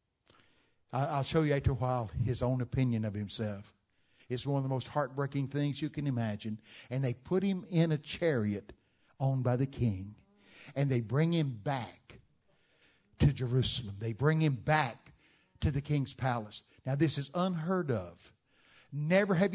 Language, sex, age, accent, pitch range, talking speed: English, male, 60-79, American, 115-160 Hz, 165 wpm